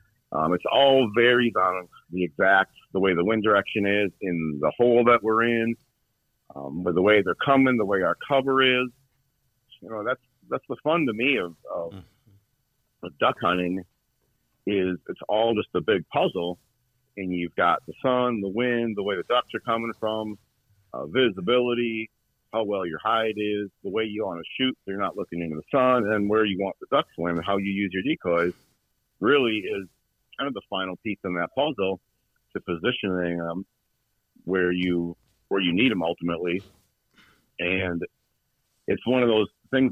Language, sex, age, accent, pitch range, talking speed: English, male, 50-69, American, 90-120 Hz, 185 wpm